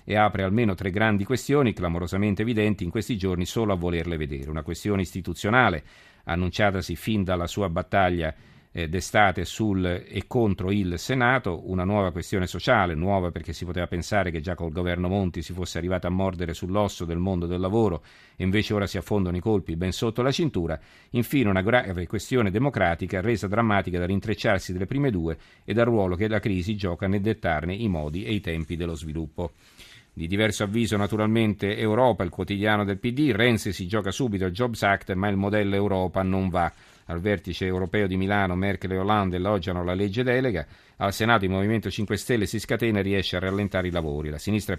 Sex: male